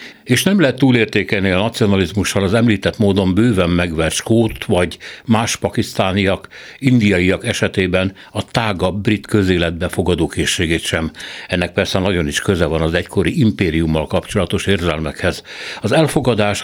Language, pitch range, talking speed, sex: Hungarian, 90-110 Hz, 130 wpm, male